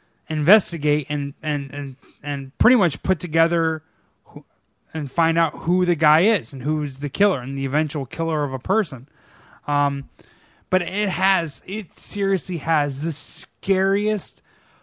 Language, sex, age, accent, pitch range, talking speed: English, male, 20-39, American, 135-165 Hz, 150 wpm